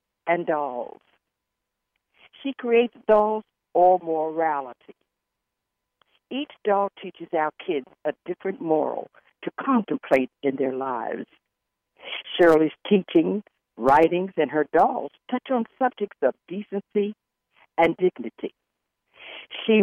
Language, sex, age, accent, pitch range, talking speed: English, female, 60-79, American, 155-240 Hz, 105 wpm